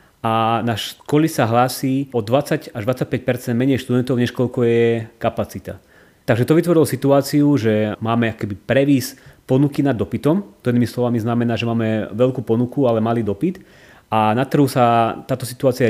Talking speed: 155 wpm